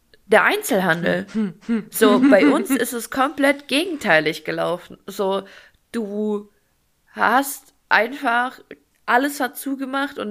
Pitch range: 185-240 Hz